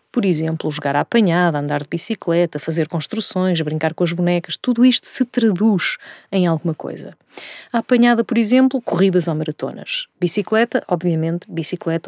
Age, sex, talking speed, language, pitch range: 30-49, female, 155 wpm, Portuguese, 165-210 Hz